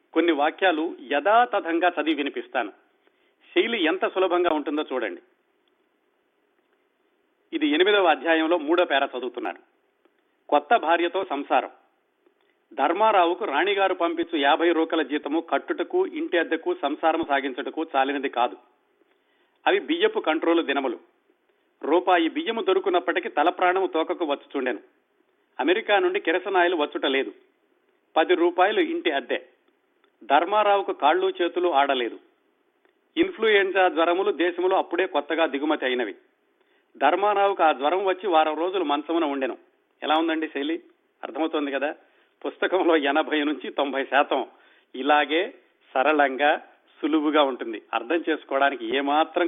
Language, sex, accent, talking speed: Telugu, male, native, 105 wpm